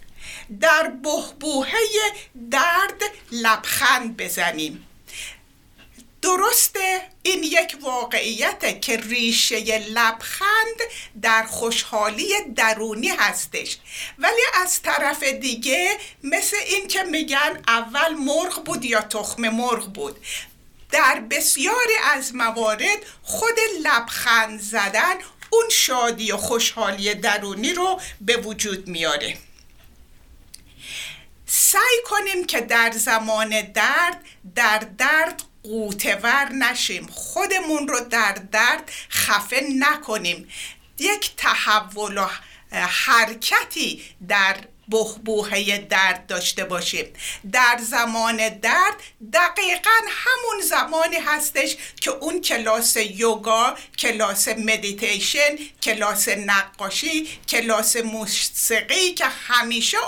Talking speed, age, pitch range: 90 wpm, 60-79, 220-345 Hz